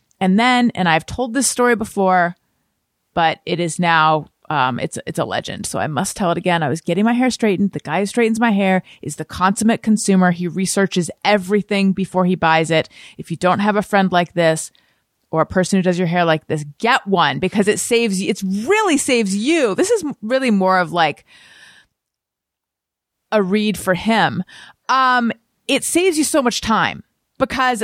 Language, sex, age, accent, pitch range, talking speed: English, female, 30-49, American, 170-230 Hz, 205 wpm